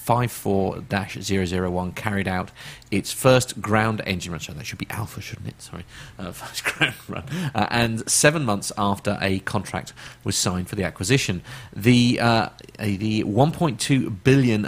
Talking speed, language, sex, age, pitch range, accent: 180 wpm, English, male, 30-49, 95-125 Hz, British